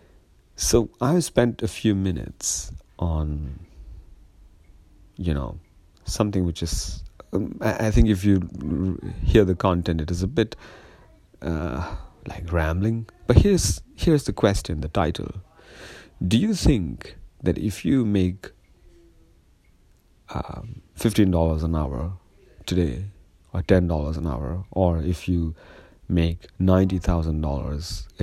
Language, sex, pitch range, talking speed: English, male, 80-100 Hz, 120 wpm